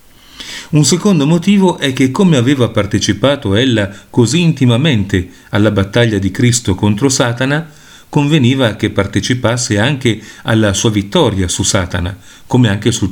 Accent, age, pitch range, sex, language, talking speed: native, 40-59, 105-140 Hz, male, Italian, 135 wpm